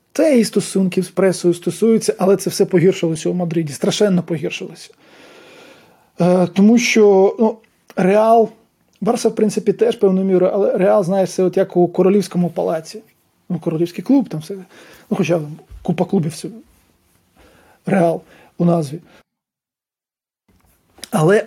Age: 20-39